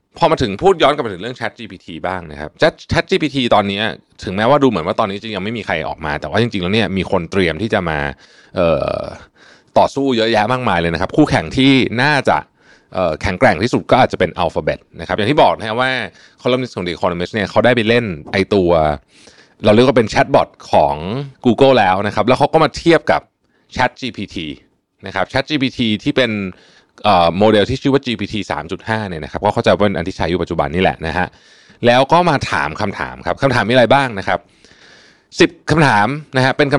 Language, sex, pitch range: Thai, male, 90-125 Hz